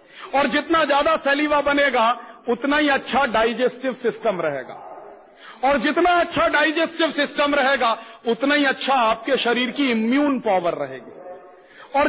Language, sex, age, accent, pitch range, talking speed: Hindi, male, 40-59, native, 245-310 Hz, 135 wpm